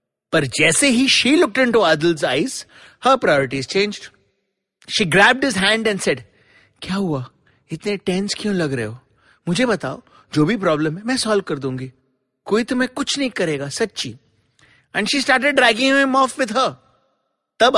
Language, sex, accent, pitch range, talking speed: English, male, Indian, 150-215 Hz, 160 wpm